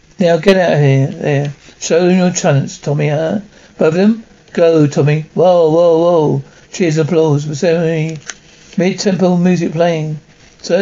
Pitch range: 155-190 Hz